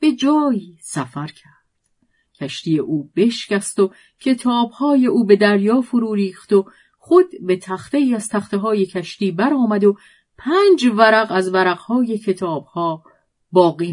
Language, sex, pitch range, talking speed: Persian, female, 165-245 Hz, 125 wpm